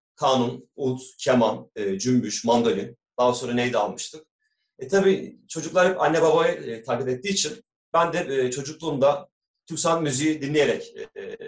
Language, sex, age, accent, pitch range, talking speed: Turkish, male, 40-59, native, 130-200 Hz, 135 wpm